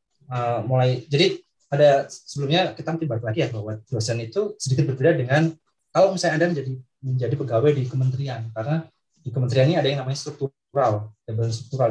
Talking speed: 160 wpm